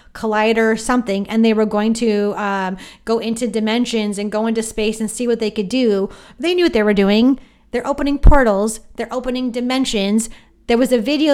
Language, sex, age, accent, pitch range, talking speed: English, female, 30-49, American, 200-240 Hz, 200 wpm